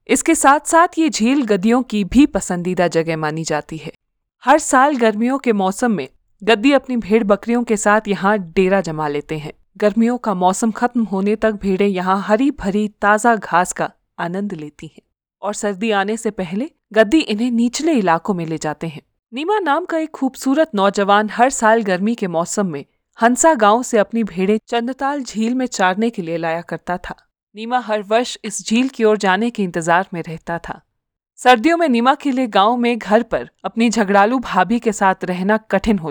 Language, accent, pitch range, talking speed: Hindi, native, 190-245 Hz, 190 wpm